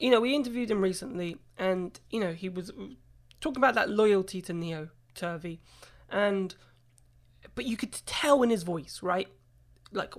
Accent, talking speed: British, 165 wpm